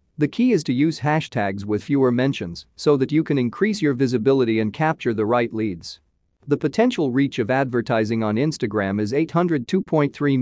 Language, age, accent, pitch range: English, 40-59, American, 105-150 Hz